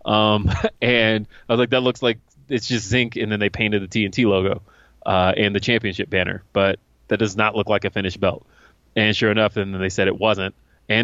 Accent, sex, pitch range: American, male, 95-115 Hz